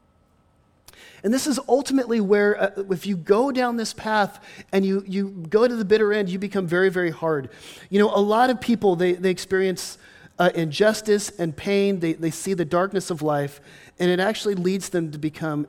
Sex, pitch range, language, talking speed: male, 150-195 Hz, English, 200 wpm